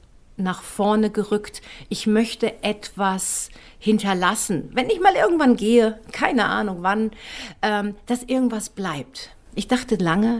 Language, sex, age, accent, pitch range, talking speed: German, female, 50-69, German, 190-225 Hz, 125 wpm